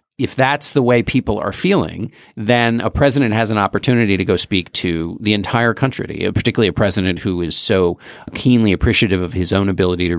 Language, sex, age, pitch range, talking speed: English, male, 50-69, 90-115 Hz, 195 wpm